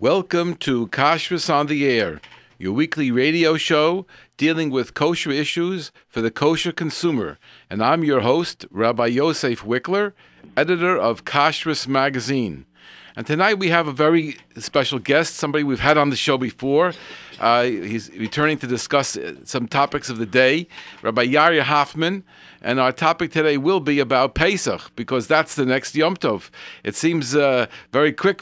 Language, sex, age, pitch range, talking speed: English, male, 50-69, 125-155 Hz, 165 wpm